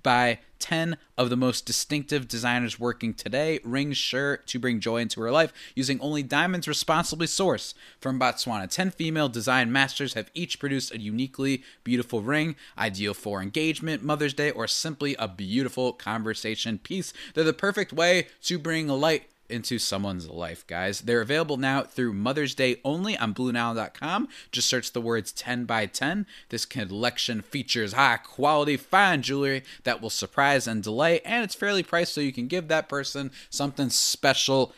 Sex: male